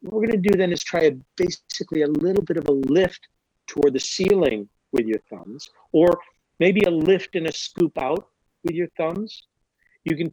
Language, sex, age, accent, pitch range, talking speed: English, male, 50-69, American, 140-180 Hz, 205 wpm